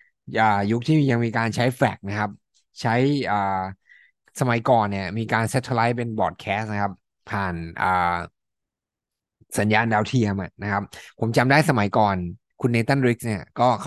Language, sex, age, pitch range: Thai, male, 20-39, 100-125 Hz